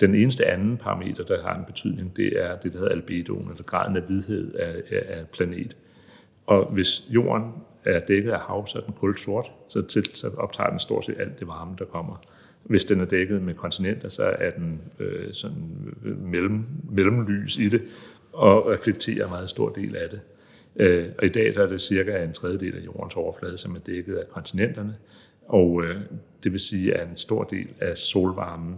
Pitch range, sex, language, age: 90-105 Hz, male, Danish, 60-79